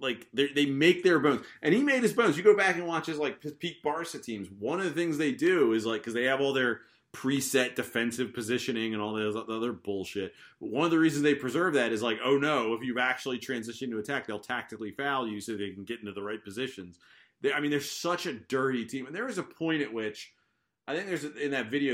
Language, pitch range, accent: English, 105-135 Hz, American